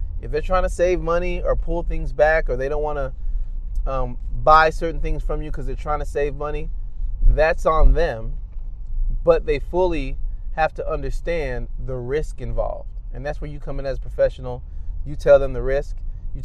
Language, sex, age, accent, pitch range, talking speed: English, male, 30-49, American, 100-150 Hz, 195 wpm